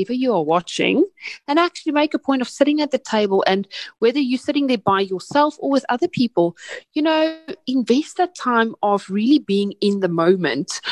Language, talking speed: English, 190 wpm